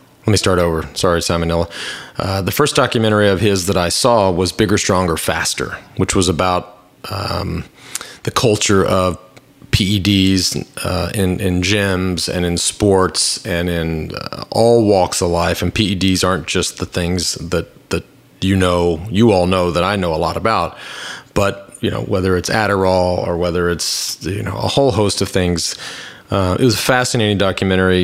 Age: 30-49